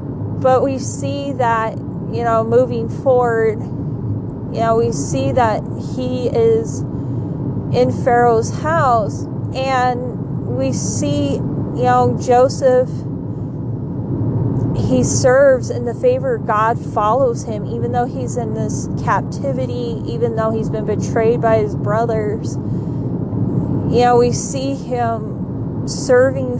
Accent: American